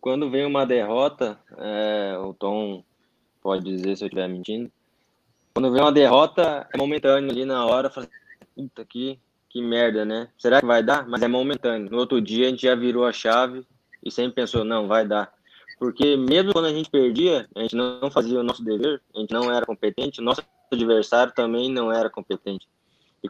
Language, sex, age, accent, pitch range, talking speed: Portuguese, male, 20-39, Brazilian, 115-130 Hz, 190 wpm